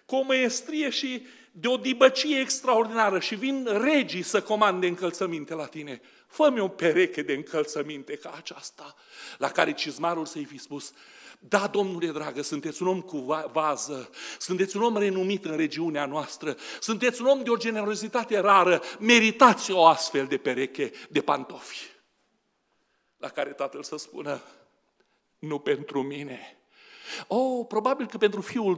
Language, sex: Romanian, male